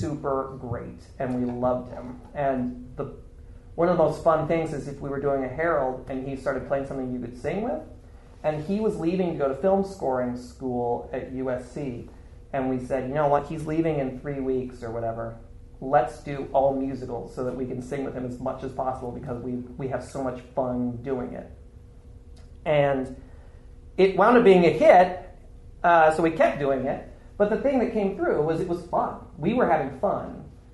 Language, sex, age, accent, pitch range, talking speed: English, male, 40-59, American, 125-155 Hz, 205 wpm